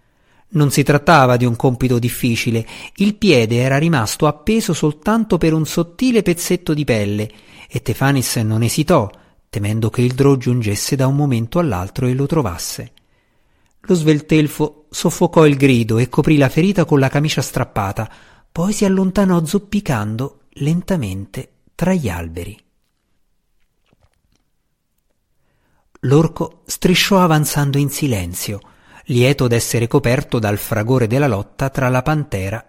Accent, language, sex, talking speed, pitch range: native, Italian, male, 130 wpm, 115-155 Hz